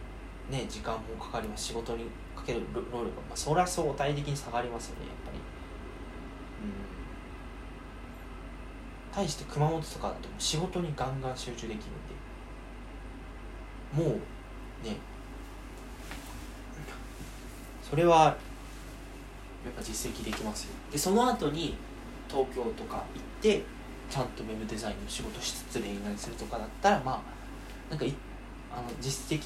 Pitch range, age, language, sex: 115-155 Hz, 20-39, Japanese, male